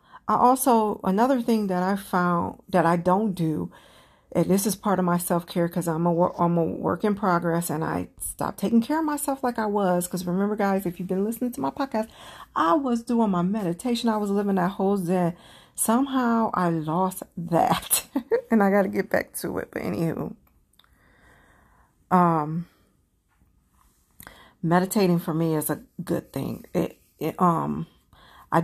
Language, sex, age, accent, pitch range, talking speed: English, female, 50-69, American, 170-205 Hz, 180 wpm